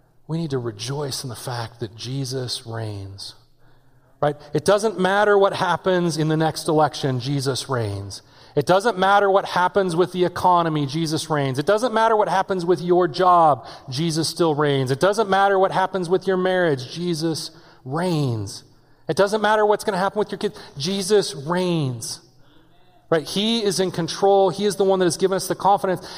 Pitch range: 150-205 Hz